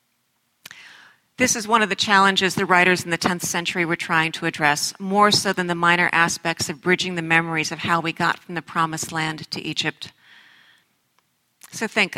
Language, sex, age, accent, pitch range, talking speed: English, female, 50-69, American, 165-190 Hz, 185 wpm